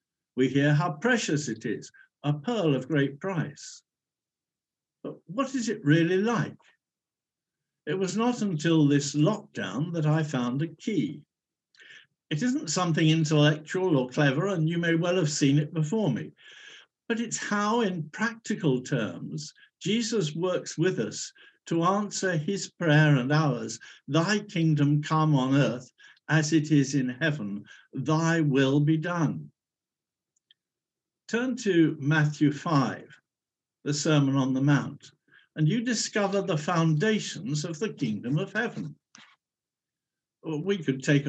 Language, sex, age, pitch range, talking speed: English, male, 60-79, 145-185 Hz, 140 wpm